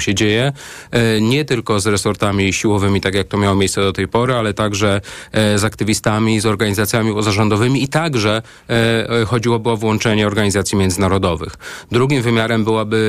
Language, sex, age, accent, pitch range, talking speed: Polish, male, 30-49, native, 105-130 Hz, 145 wpm